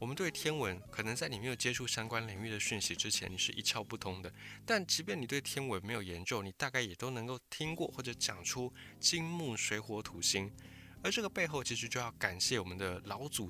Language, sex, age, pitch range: Chinese, male, 20-39, 105-140 Hz